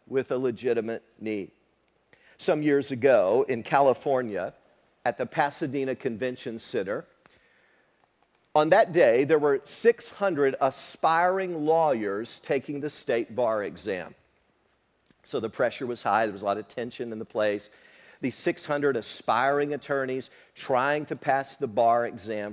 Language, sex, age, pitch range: English, male, 50-69, 120-160 Hz